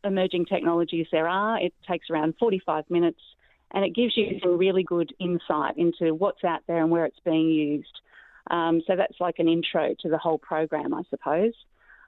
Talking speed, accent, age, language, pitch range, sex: 190 wpm, Australian, 30-49, English, 170-195 Hz, female